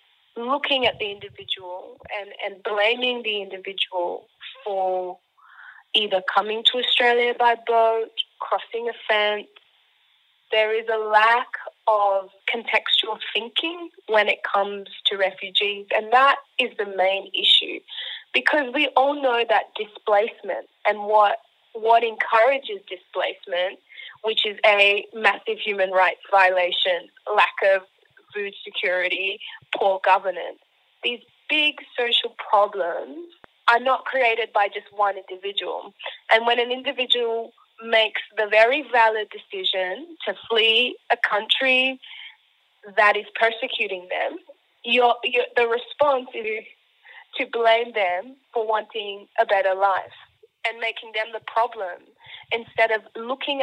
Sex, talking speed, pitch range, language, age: female, 125 wpm, 205-265 Hz, English, 20-39